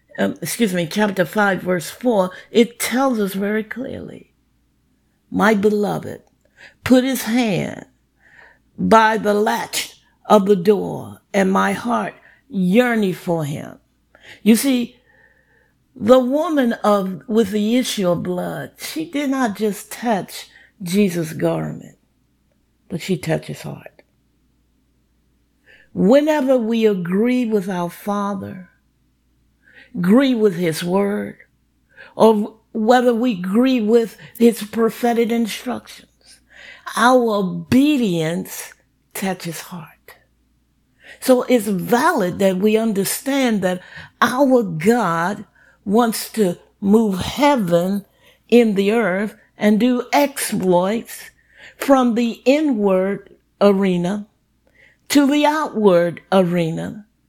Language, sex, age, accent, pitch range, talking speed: English, female, 50-69, American, 185-240 Hz, 105 wpm